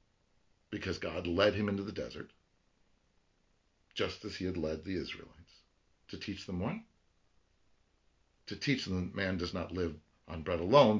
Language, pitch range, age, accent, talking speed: English, 80-105 Hz, 50-69, American, 160 wpm